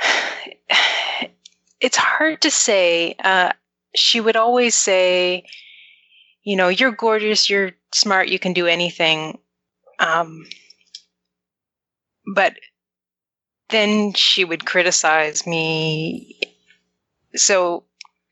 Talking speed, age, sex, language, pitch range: 90 wpm, 30-49, female, English, 160-190 Hz